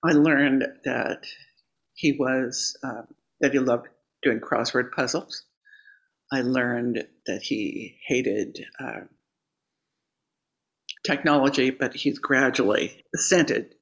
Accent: American